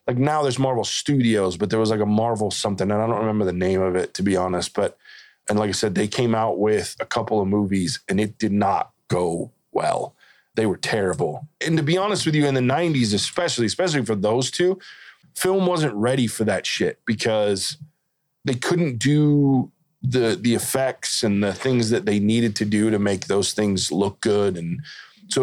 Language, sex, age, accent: English, male, 20-39, American